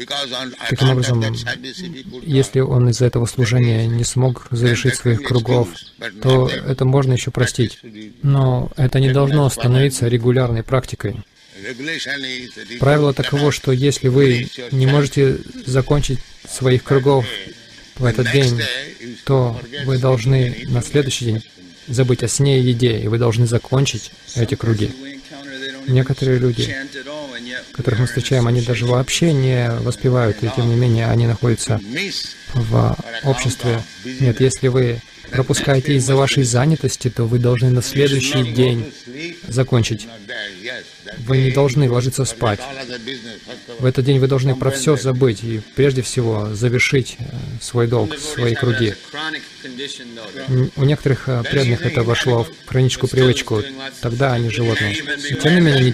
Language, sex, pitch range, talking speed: Russian, male, 120-135 Hz, 130 wpm